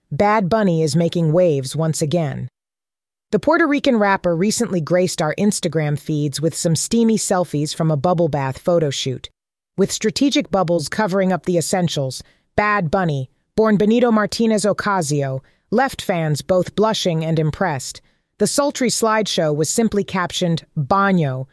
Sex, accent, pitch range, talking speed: female, American, 150-195 Hz, 140 wpm